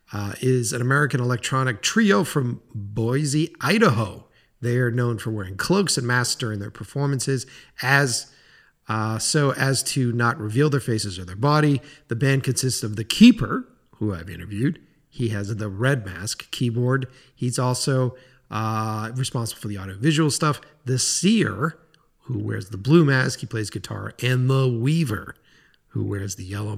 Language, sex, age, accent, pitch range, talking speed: English, male, 40-59, American, 115-140 Hz, 160 wpm